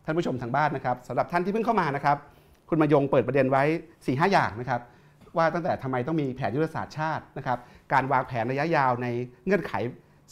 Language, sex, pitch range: Thai, male, 115-145 Hz